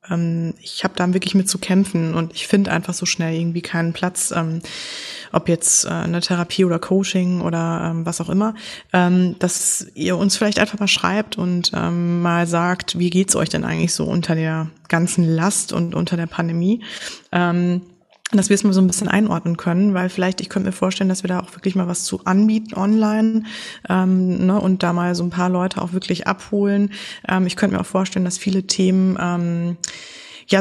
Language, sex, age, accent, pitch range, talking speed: German, female, 20-39, German, 175-195 Hz, 195 wpm